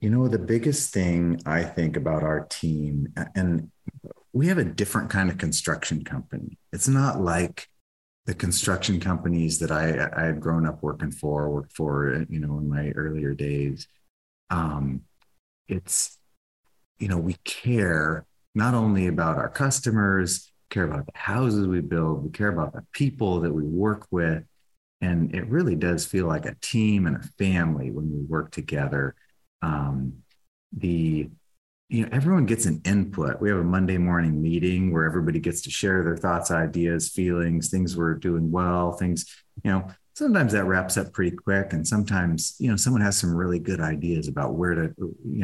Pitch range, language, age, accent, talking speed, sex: 80-100 Hz, English, 30-49, American, 175 wpm, male